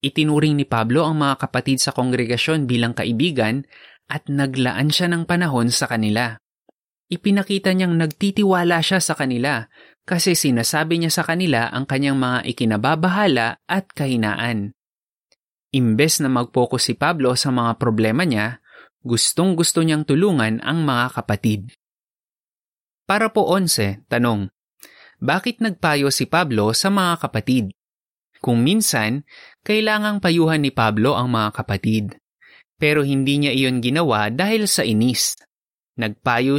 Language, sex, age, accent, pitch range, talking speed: Filipino, male, 20-39, native, 120-165 Hz, 130 wpm